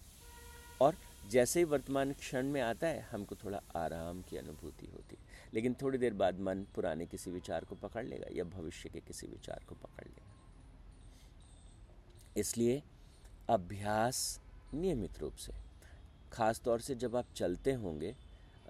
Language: Hindi